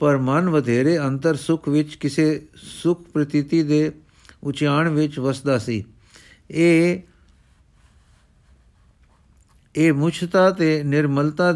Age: 50-69